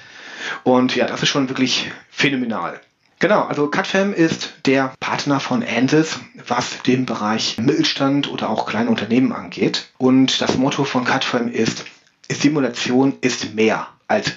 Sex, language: male, German